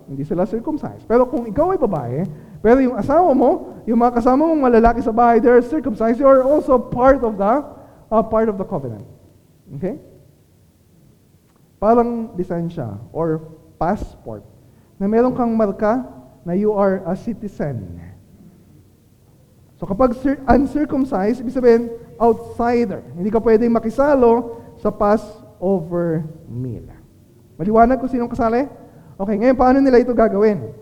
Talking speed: 140 wpm